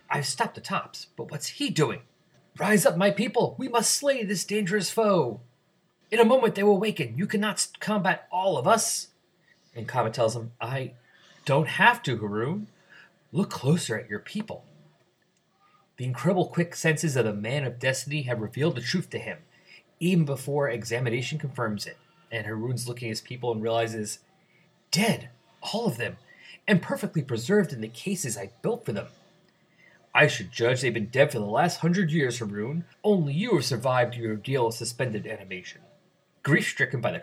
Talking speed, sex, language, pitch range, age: 175 wpm, male, English, 125-190 Hz, 30-49